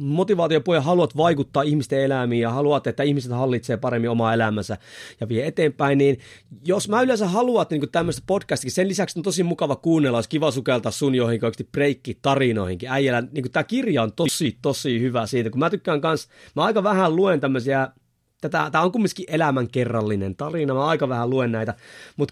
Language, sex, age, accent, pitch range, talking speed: Finnish, male, 30-49, native, 120-165 Hz, 175 wpm